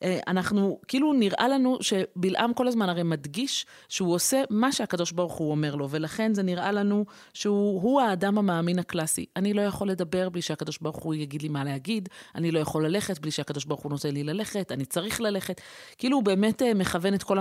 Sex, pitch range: female, 160-215 Hz